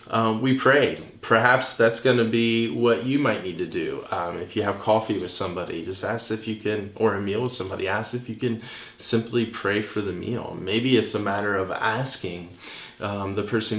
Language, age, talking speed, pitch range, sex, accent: English, 20-39, 215 wpm, 100-115 Hz, male, American